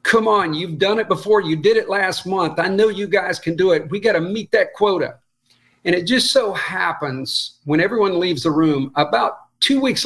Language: English